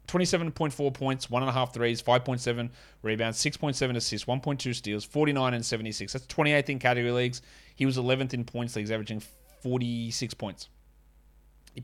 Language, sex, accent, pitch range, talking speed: English, male, Australian, 115-150 Hz, 155 wpm